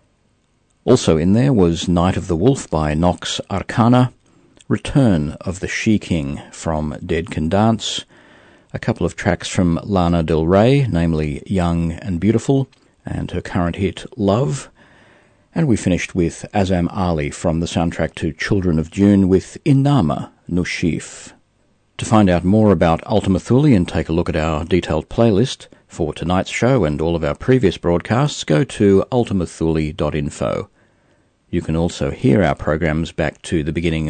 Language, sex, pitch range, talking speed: English, male, 80-105 Hz, 155 wpm